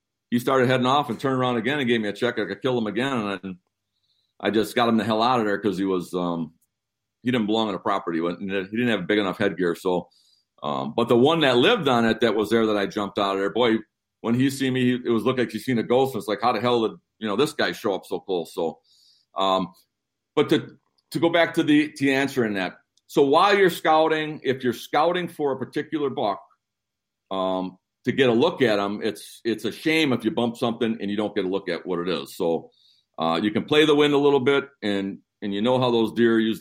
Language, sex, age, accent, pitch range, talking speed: English, male, 50-69, American, 100-125 Hz, 255 wpm